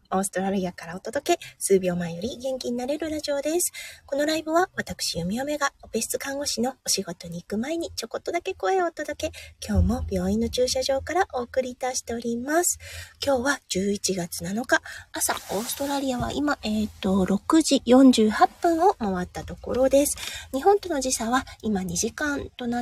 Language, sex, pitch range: Japanese, female, 195-280 Hz